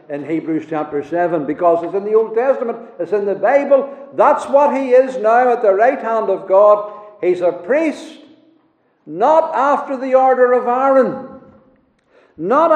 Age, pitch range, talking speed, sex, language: 60-79, 210-285 Hz, 165 wpm, male, English